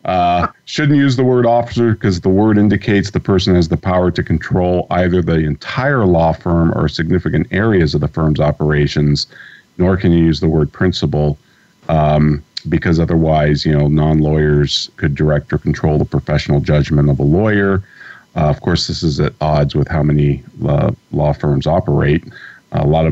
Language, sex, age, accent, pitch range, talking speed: English, male, 40-59, American, 75-90 Hz, 180 wpm